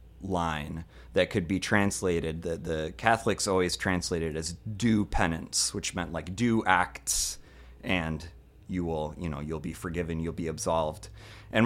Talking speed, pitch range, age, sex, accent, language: 155 wpm, 75-95 Hz, 30-49, male, American, English